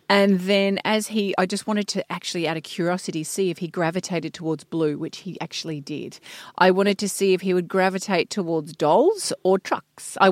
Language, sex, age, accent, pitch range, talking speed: English, female, 30-49, Australian, 175-220 Hz, 205 wpm